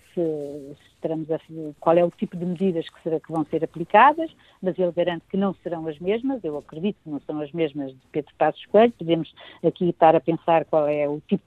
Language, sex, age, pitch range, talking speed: Portuguese, female, 50-69, 165-215 Hz, 230 wpm